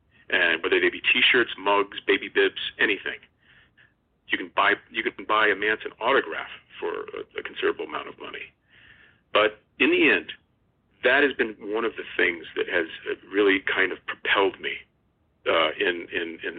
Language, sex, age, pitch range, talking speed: English, male, 50-69, 370-420 Hz, 170 wpm